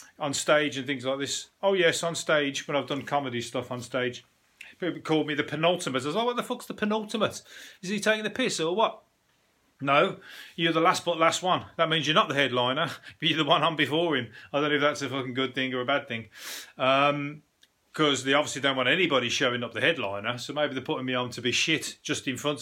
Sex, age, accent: male, 30-49, British